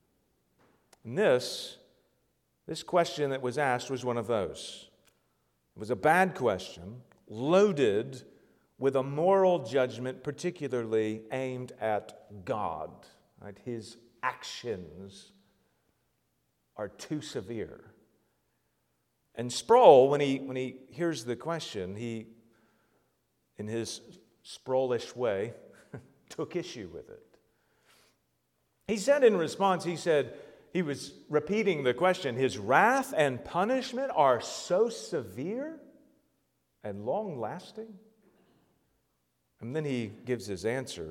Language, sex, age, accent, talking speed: English, male, 50-69, American, 110 wpm